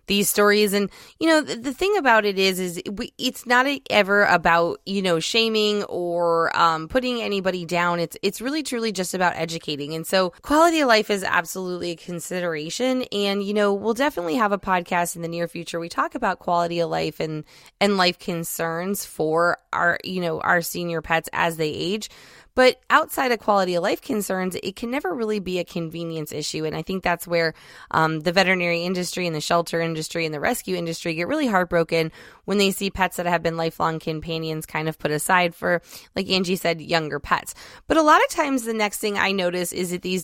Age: 20-39